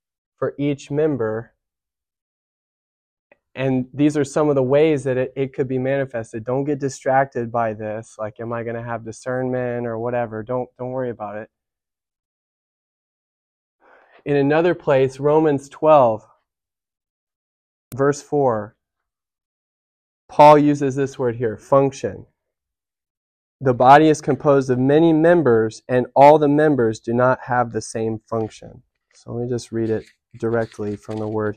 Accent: American